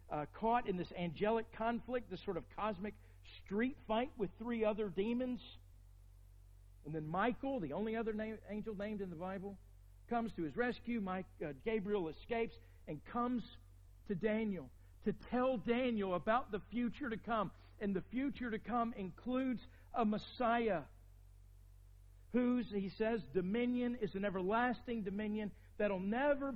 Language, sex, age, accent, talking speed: English, male, 50-69, American, 145 wpm